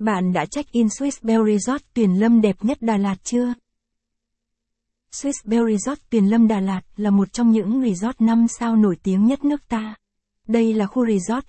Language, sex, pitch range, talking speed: Vietnamese, female, 205-240 Hz, 195 wpm